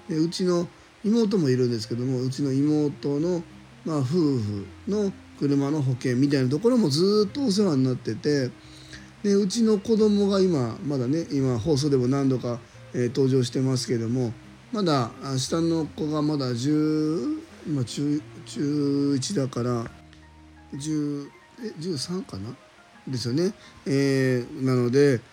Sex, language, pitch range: male, Japanese, 125-180 Hz